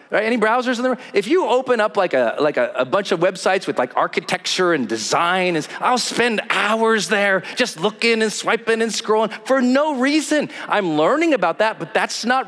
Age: 40-59